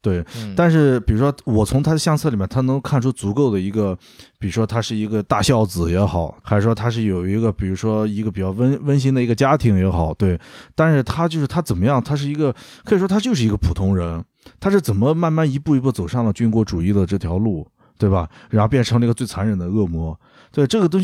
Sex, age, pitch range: male, 20-39, 100-140 Hz